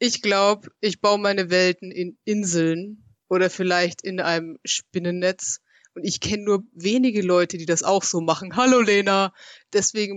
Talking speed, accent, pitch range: 160 wpm, German, 180-230 Hz